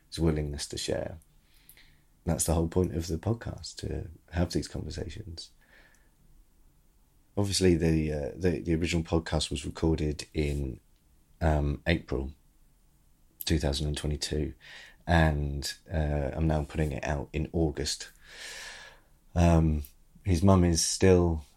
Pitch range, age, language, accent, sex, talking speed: 75-85 Hz, 30-49, English, British, male, 110 wpm